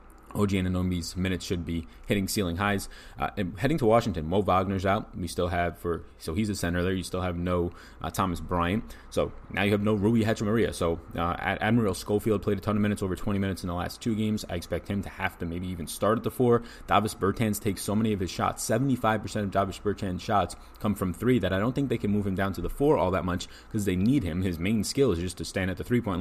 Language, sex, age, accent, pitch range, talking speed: English, male, 20-39, American, 90-105 Hz, 260 wpm